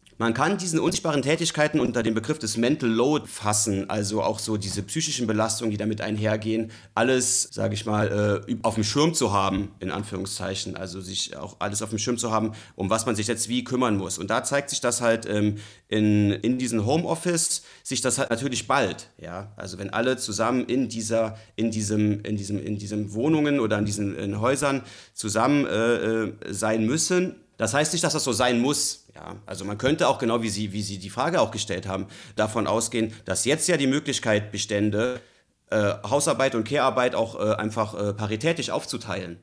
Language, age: German, 30-49